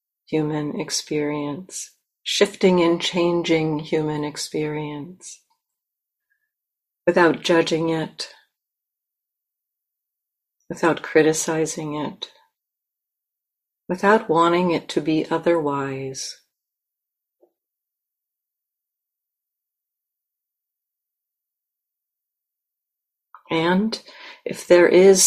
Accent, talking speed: American, 55 wpm